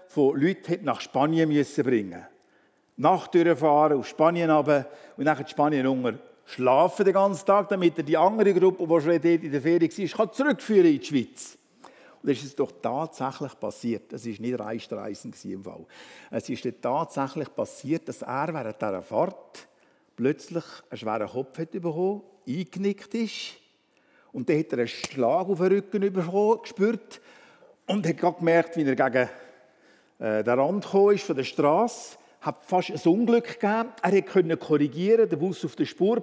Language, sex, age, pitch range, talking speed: German, male, 60-79, 135-195 Hz, 175 wpm